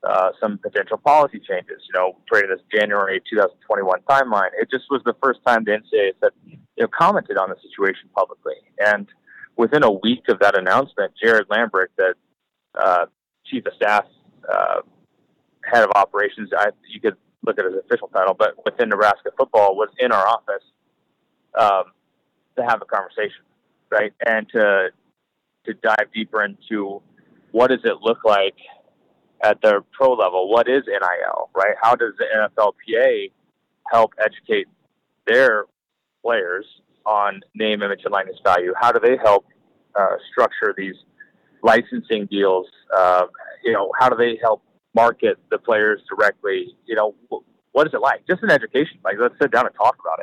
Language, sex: English, male